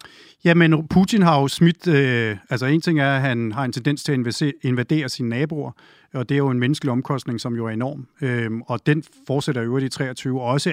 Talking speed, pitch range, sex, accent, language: 235 wpm, 130-165 Hz, male, native, Danish